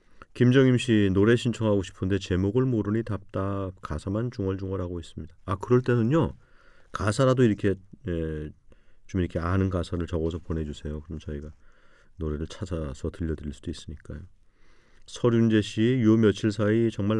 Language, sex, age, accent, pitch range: Korean, male, 40-59, native, 85-110 Hz